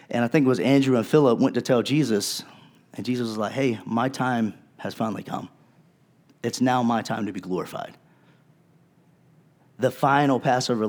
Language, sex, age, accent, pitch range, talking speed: English, male, 30-49, American, 115-155 Hz, 175 wpm